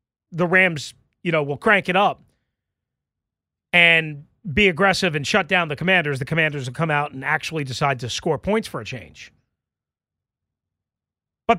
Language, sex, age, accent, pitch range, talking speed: English, male, 40-59, American, 160-260 Hz, 160 wpm